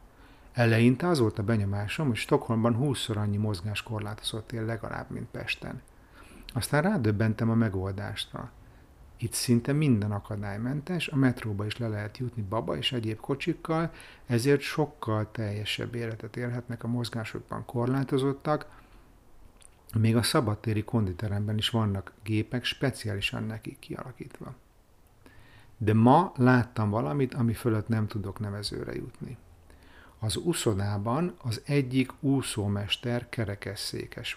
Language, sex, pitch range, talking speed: Hungarian, male, 105-125 Hz, 115 wpm